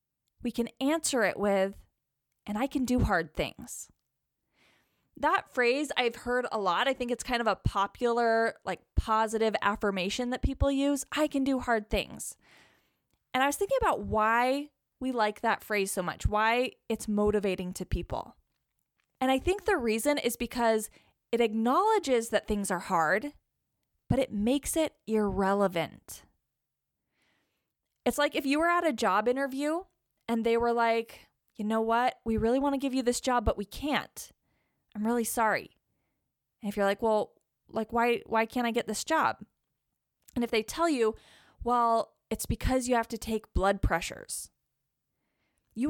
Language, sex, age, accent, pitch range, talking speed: English, female, 10-29, American, 220-285 Hz, 165 wpm